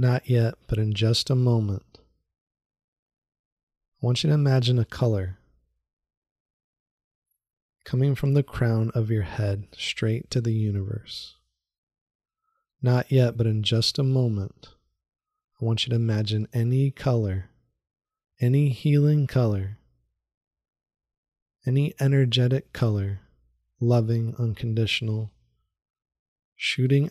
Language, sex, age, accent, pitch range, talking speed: English, male, 20-39, American, 100-120 Hz, 105 wpm